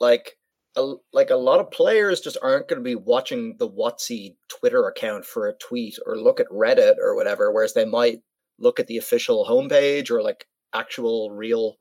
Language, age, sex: English, 30-49, male